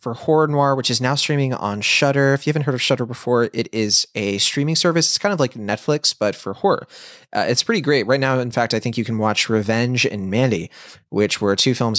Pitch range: 105-135 Hz